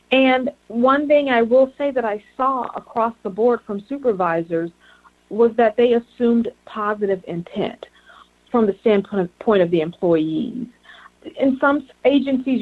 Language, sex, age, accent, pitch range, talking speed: English, female, 40-59, American, 195-240 Hz, 140 wpm